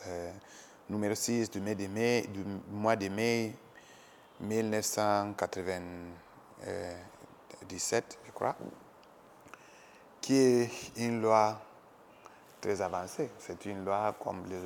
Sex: male